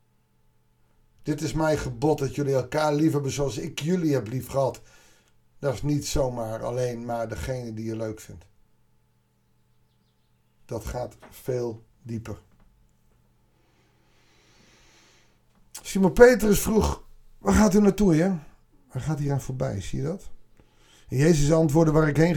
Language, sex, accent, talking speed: Dutch, male, Dutch, 135 wpm